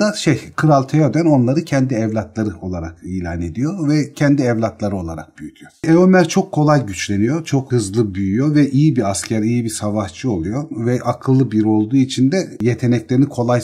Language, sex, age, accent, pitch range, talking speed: Turkish, male, 40-59, native, 105-140 Hz, 165 wpm